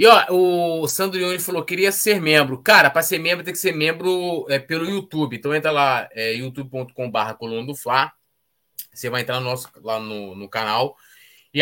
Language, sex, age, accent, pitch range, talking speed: Portuguese, male, 20-39, Brazilian, 125-165 Hz, 190 wpm